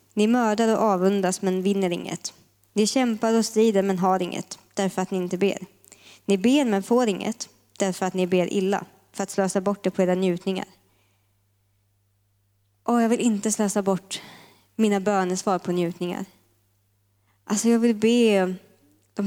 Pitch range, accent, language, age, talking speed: 180-225 Hz, native, Swedish, 20-39, 160 wpm